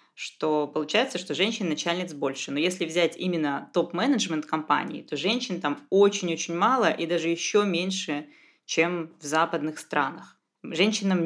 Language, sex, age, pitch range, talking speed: Russian, female, 20-39, 160-205 Hz, 140 wpm